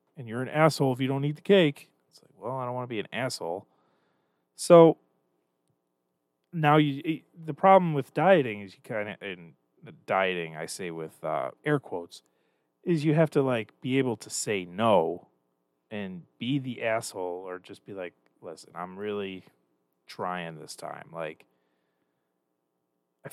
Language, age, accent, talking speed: English, 30-49, American, 170 wpm